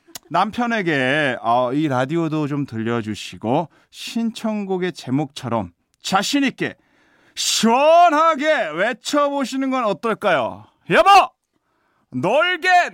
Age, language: 40-59, Korean